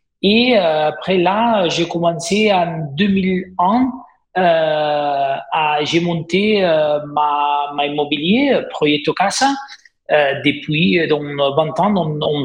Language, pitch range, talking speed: French, 155-205 Hz, 115 wpm